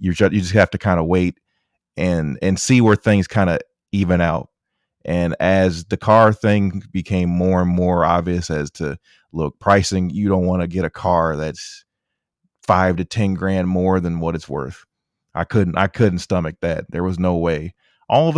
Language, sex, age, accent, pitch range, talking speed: English, male, 30-49, American, 85-105 Hz, 195 wpm